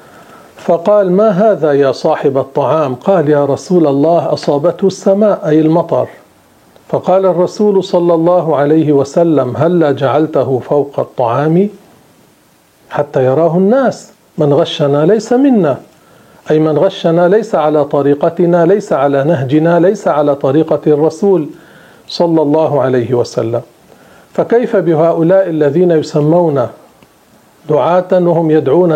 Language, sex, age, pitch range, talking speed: Arabic, male, 40-59, 145-180 Hz, 115 wpm